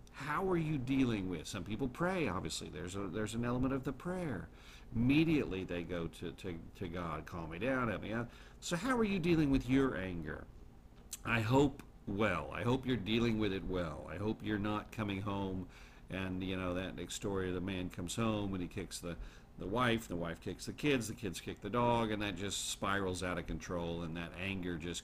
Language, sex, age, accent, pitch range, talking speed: English, male, 50-69, American, 85-120 Hz, 220 wpm